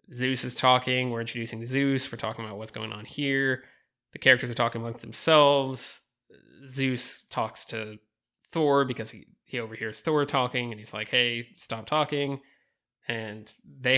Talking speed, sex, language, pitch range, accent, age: 160 wpm, male, English, 120-140 Hz, American, 20-39